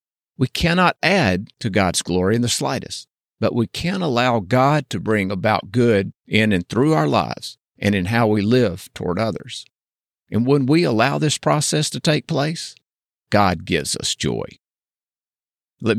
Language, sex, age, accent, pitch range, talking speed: English, male, 50-69, American, 110-140 Hz, 165 wpm